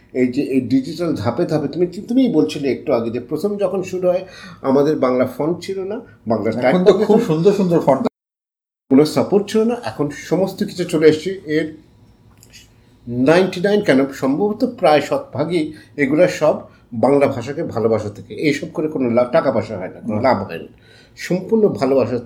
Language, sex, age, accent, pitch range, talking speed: Bengali, male, 50-69, native, 120-175 Hz, 160 wpm